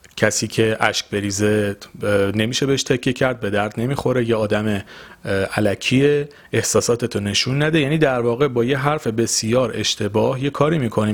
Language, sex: Persian, male